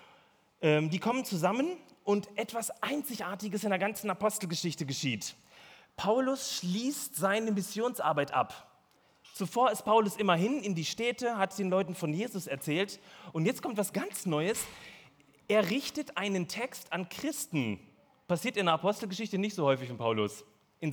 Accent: German